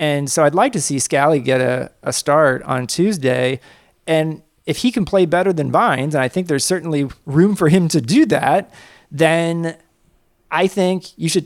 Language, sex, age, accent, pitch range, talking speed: English, male, 40-59, American, 130-175 Hz, 195 wpm